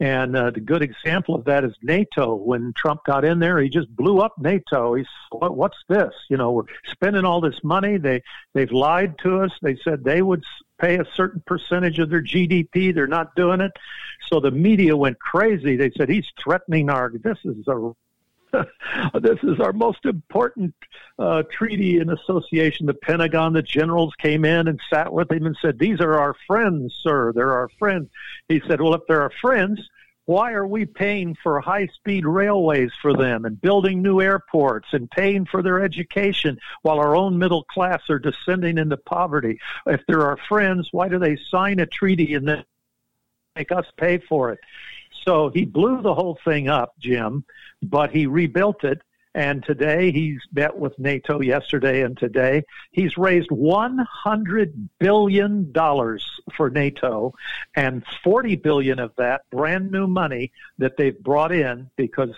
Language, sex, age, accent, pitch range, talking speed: English, male, 60-79, American, 140-185 Hz, 175 wpm